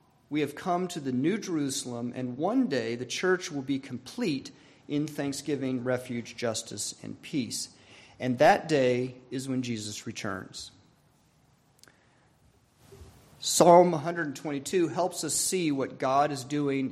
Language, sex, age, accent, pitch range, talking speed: English, male, 40-59, American, 130-175 Hz, 130 wpm